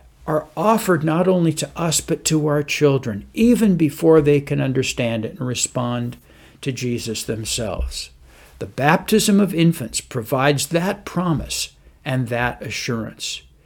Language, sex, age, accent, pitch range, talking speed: English, male, 60-79, American, 120-180 Hz, 135 wpm